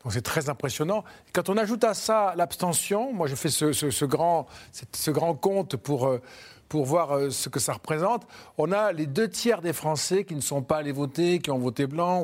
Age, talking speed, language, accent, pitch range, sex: 50-69, 220 wpm, French, French, 140-190 Hz, male